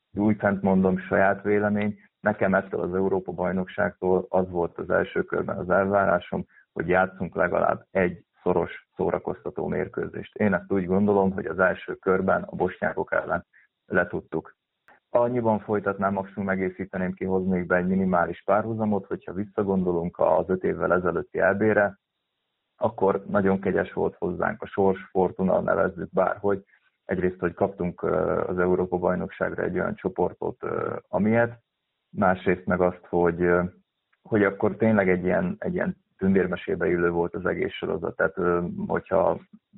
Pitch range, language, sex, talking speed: 90-105 Hz, Hungarian, male, 135 wpm